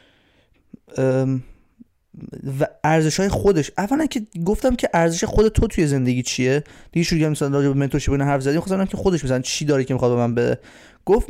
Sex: male